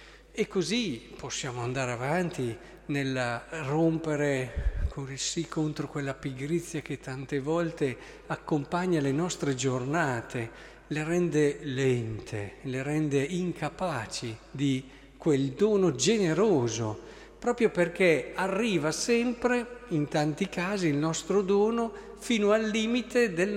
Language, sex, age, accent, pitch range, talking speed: Italian, male, 50-69, native, 130-185 Hz, 110 wpm